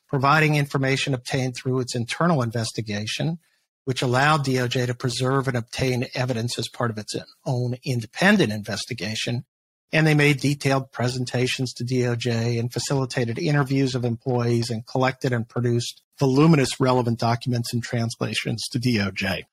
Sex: male